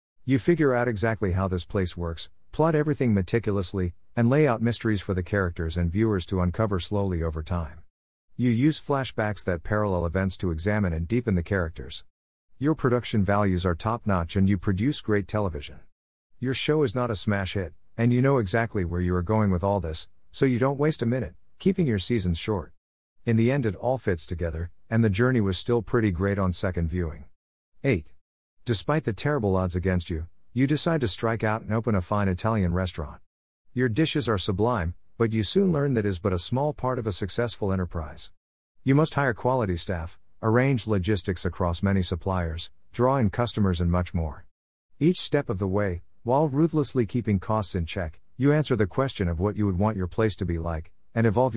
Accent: American